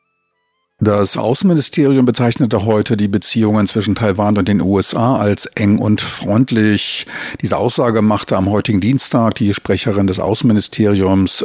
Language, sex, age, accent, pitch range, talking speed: German, male, 50-69, German, 100-115 Hz, 130 wpm